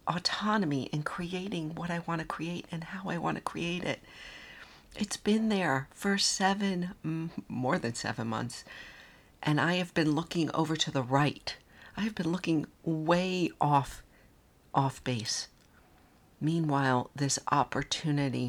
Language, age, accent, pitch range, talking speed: English, 50-69, American, 135-180 Hz, 140 wpm